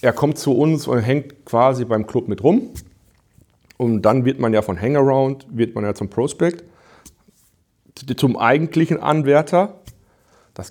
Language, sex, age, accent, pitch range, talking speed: German, male, 40-59, German, 110-135 Hz, 135 wpm